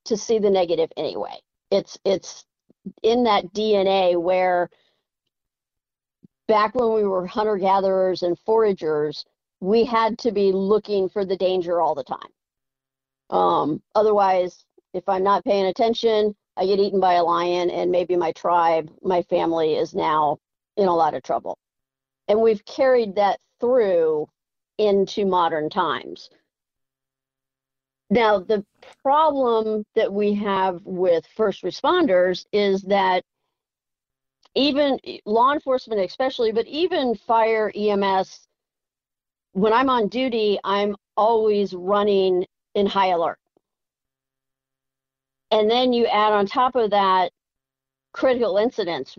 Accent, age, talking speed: American, 50-69, 125 wpm